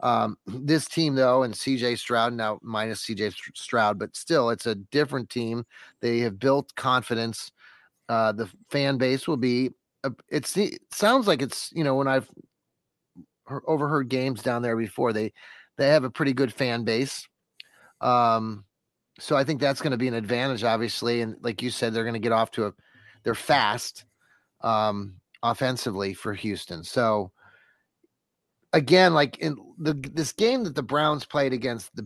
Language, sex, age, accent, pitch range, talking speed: English, male, 30-49, American, 120-150 Hz, 170 wpm